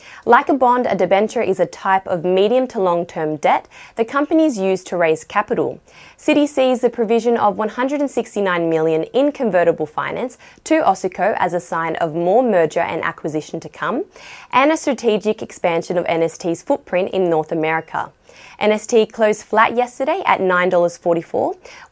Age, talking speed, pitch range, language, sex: 20-39, 160 wpm, 170-255 Hz, English, female